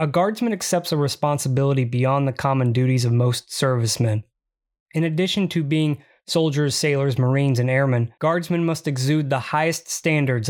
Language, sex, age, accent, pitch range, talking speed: English, male, 20-39, American, 130-165 Hz, 155 wpm